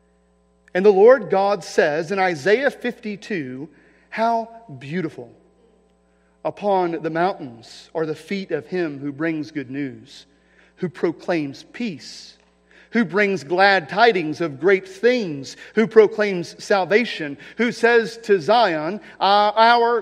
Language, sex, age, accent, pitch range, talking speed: English, male, 40-59, American, 145-230 Hz, 120 wpm